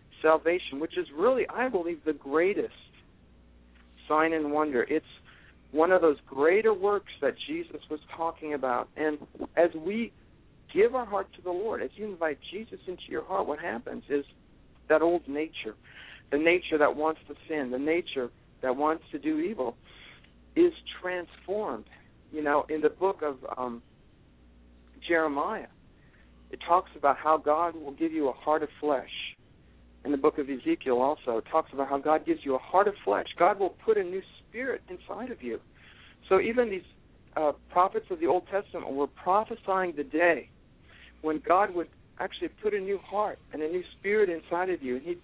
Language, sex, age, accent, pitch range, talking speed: English, male, 60-79, American, 140-190 Hz, 180 wpm